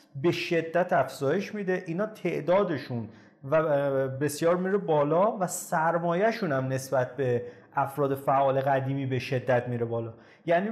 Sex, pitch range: male, 135-180 Hz